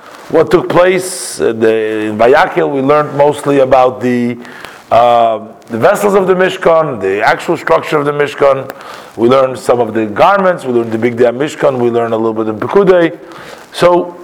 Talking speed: 185 wpm